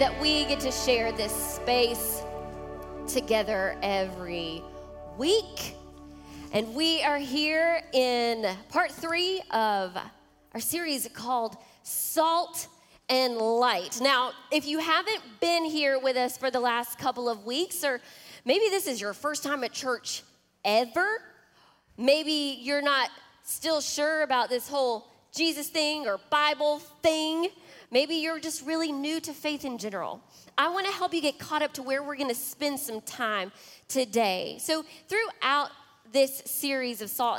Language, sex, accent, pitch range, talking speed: English, female, American, 235-315 Hz, 145 wpm